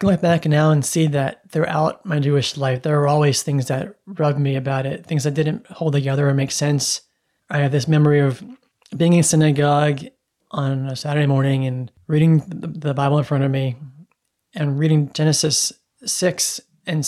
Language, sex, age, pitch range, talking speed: English, male, 20-39, 140-160 Hz, 185 wpm